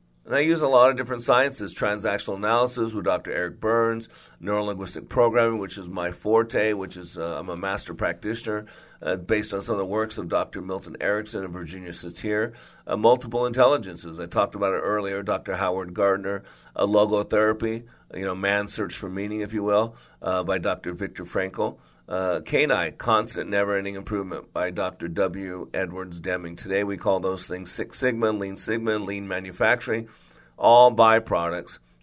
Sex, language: male, English